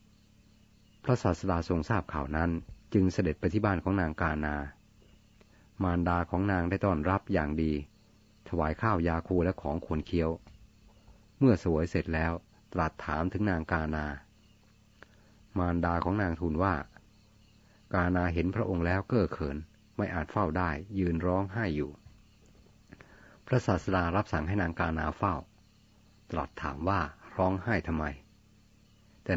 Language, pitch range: Thai, 85-105 Hz